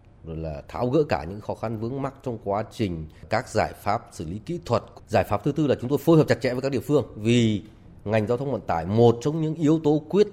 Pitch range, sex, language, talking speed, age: 100-135 Hz, male, Vietnamese, 275 wpm, 20-39